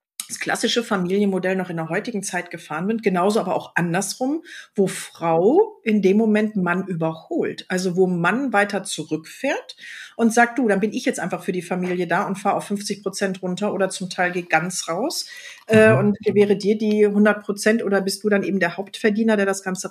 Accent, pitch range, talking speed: German, 185-230 Hz, 200 wpm